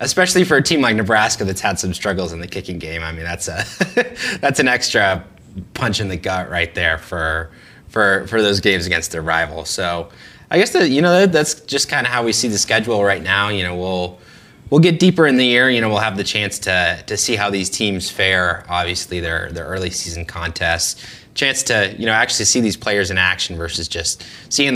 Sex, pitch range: male, 90-115 Hz